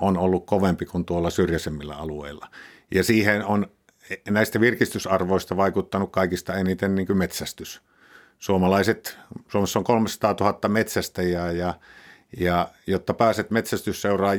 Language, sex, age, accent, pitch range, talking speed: Finnish, male, 50-69, native, 90-115 Hz, 115 wpm